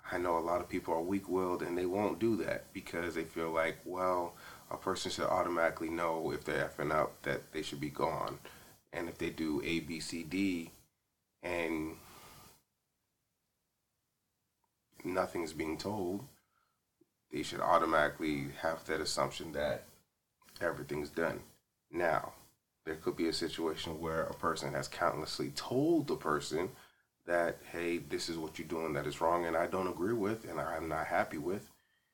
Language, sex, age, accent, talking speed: English, male, 30-49, American, 165 wpm